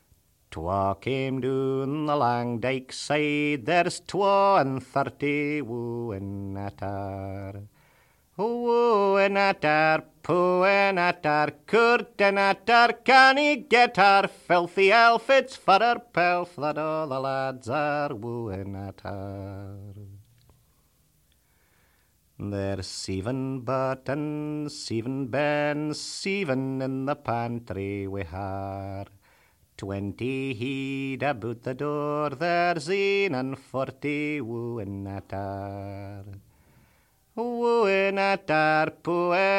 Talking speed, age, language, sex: 95 wpm, 40-59, English, male